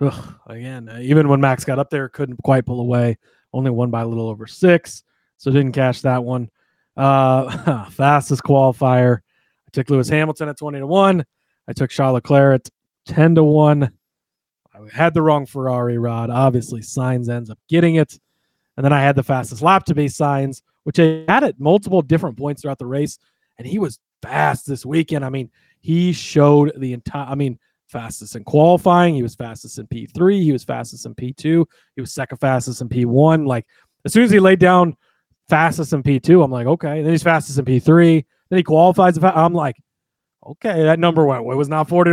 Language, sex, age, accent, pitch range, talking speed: English, male, 30-49, American, 125-160 Hz, 200 wpm